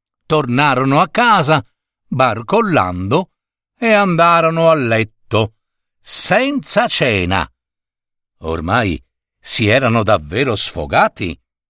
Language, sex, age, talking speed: Italian, male, 50-69, 75 wpm